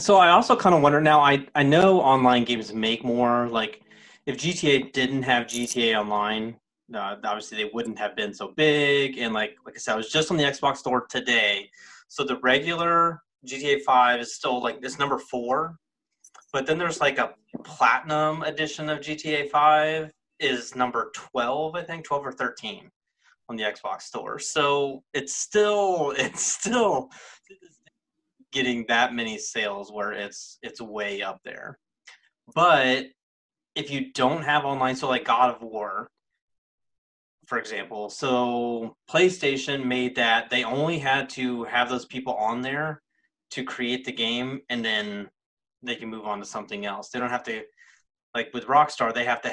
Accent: American